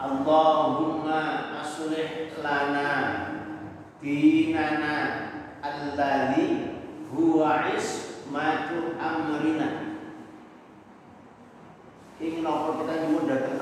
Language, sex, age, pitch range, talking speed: Indonesian, male, 40-59, 135-165 Hz, 60 wpm